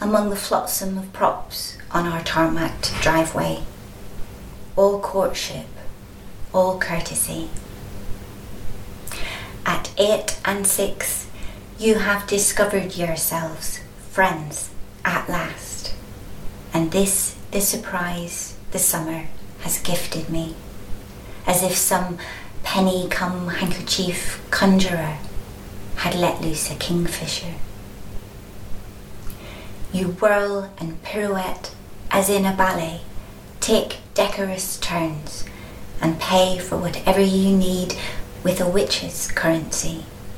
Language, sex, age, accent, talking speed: English, female, 30-49, British, 100 wpm